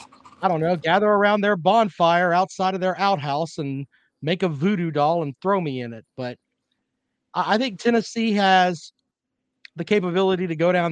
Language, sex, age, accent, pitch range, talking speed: English, male, 40-59, American, 155-205 Hz, 170 wpm